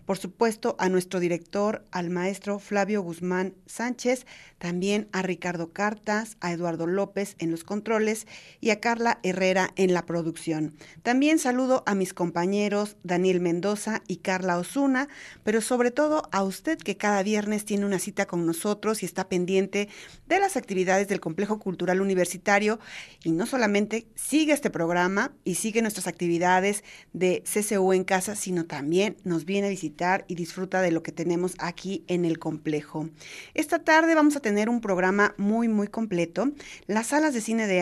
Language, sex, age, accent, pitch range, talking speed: Spanish, female, 40-59, Mexican, 180-220 Hz, 165 wpm